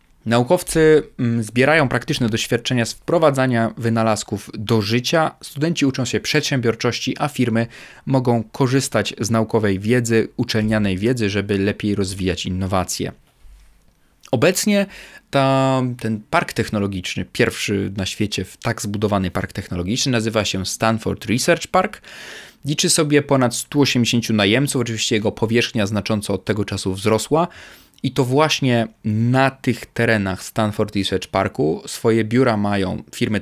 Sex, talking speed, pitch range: male, 120 wpm, 105-130 Hz